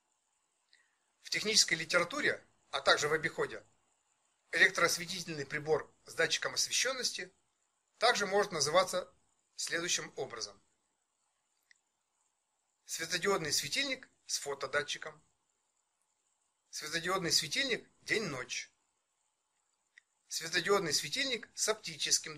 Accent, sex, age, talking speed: native, male, 40-59, 75 wpm